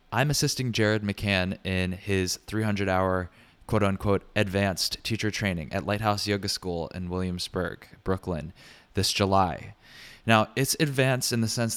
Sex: male